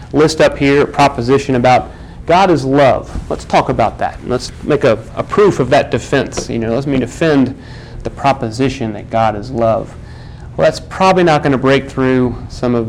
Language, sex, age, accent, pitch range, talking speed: English, male, 40-59, American, 115-125 Hz, 190 wpm